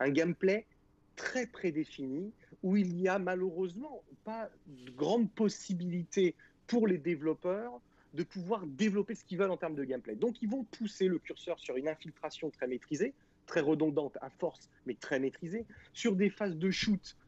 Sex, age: male, 40-59